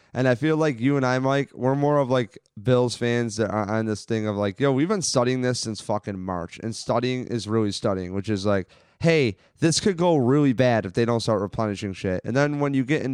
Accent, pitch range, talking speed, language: American, 100-130 Hz, 250 wpm, English